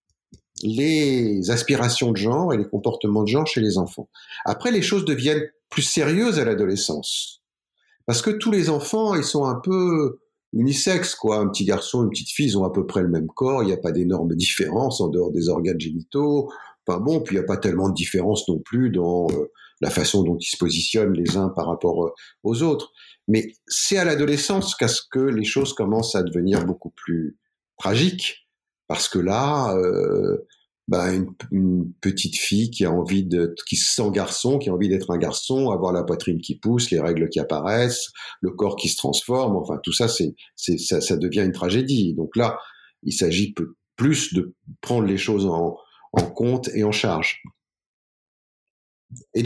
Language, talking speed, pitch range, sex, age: French, 190 wpm, 95-150 Hz, male, 50-69